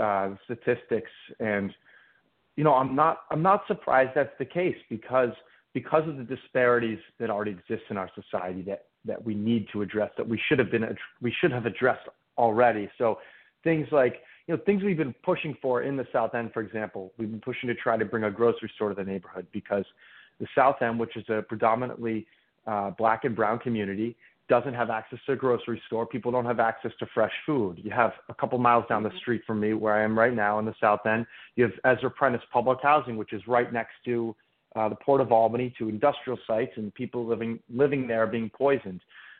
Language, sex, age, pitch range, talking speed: English, male, 30-49, 110-130 Hz, 215 wpm